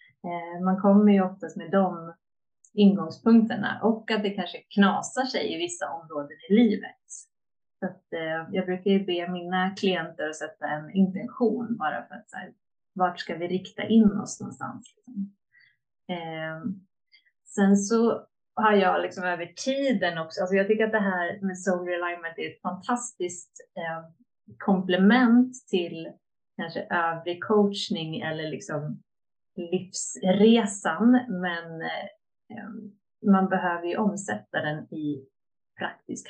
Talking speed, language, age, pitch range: 135 wpm, Swedish, 30-49, 175-210 Hz